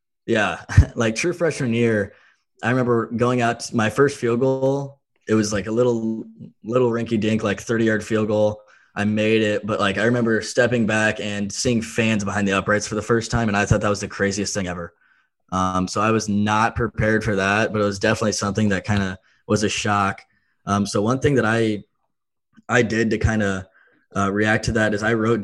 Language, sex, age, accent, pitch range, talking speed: English, male, 20-39, American, 100-115 Hz, 215 wpm